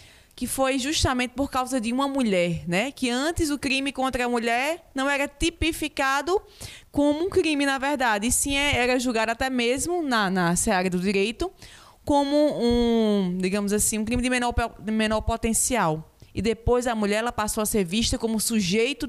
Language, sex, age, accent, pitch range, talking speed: Portuguese, female, 20-39, Brazilian, 210-280 Hz, 175 wpm